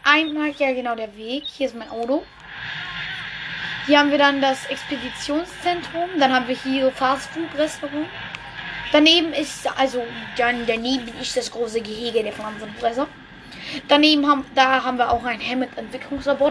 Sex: female